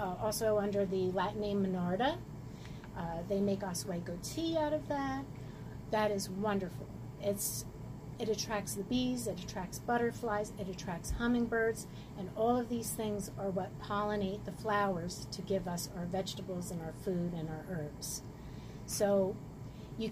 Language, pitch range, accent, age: English, 175-210 Hz, American, 40-59